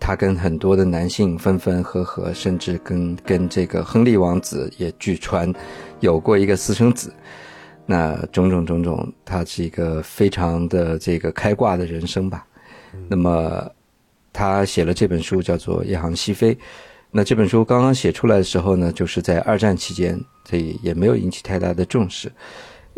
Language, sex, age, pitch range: Chinese, male, 50-69, 85-105 Hz